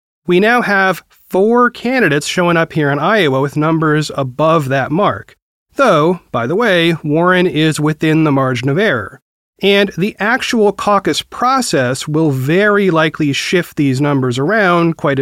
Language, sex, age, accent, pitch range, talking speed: English, male, 30-49, American, 145-205 Hz, 155 wpm